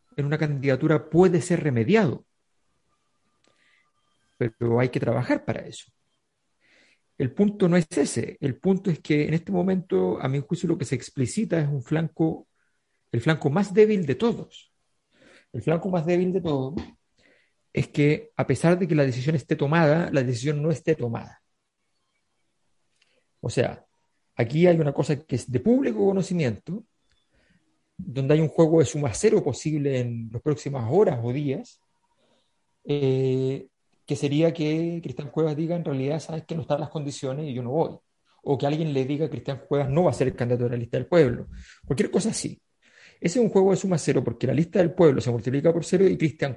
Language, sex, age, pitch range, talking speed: Spanish, male, 50-69, 135-175 Hz, 185 wpm